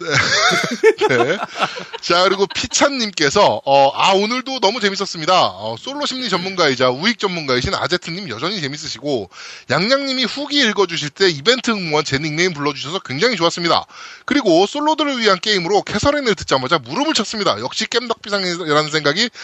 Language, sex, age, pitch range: Korean, male, 20-39, 165-250 Hz